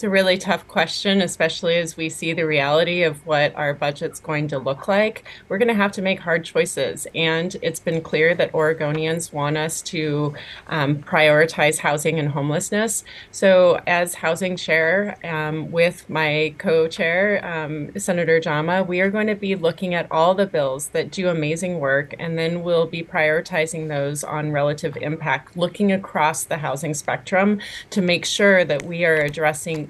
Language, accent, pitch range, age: English, American, 150-180 Hz, 30-49